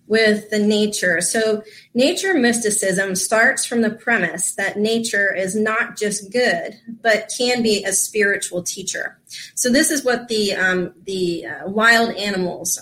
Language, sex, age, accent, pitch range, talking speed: English, female, 30-49, American, 185-230 Hz, 145 wpm